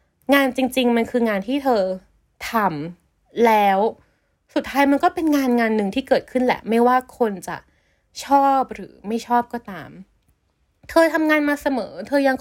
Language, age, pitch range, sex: Thai, 20-39, 210-275 Hz, female